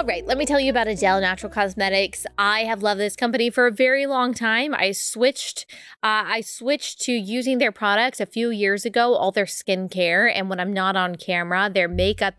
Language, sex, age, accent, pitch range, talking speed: English, female, 20-39, American, 185-225 Hz, 215 wpm